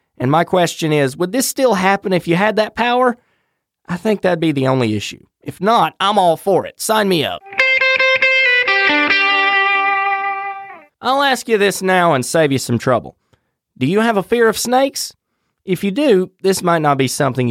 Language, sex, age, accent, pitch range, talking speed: English, male, 30-49, American, 140-225 Hz, 185 wpm